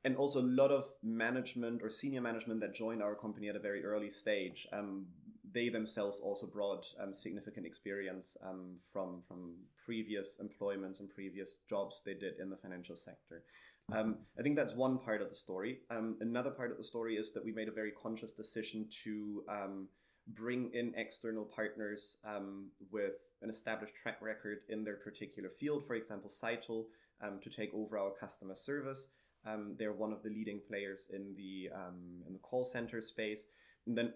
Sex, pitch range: male, 105-115 Hz